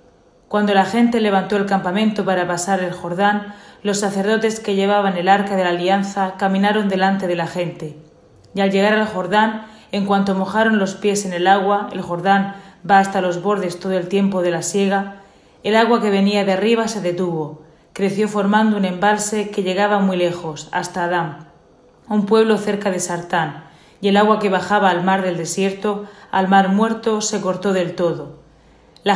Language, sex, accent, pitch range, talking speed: Spanish, female, Spanish, 185-210 Hz, 185 wpm